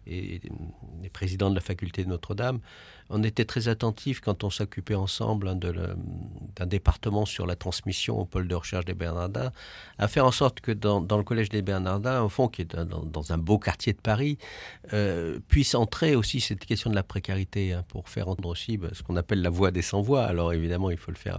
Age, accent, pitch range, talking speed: 50-69, French, 90-110 Hz, 225 wpm